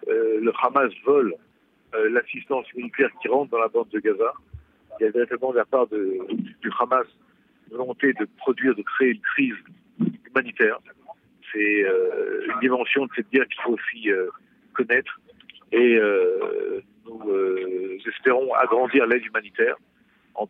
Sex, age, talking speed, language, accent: male, 50-69, 160 wpm, Italian, French